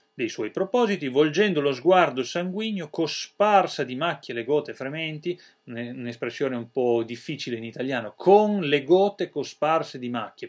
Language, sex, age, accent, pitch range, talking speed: Italian, male, 30-49, native, 120-160 Hz, 145 wpm